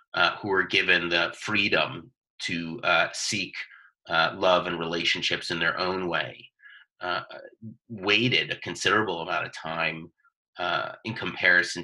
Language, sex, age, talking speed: English, male, 30-49, 135 wpm